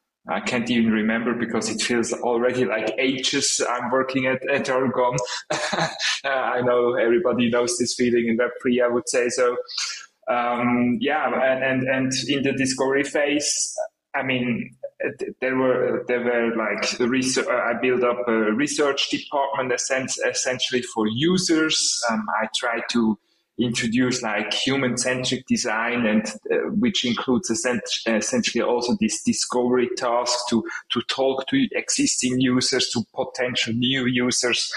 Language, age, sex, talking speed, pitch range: English, 20-39, male, 145 wpm, 120-135 Hz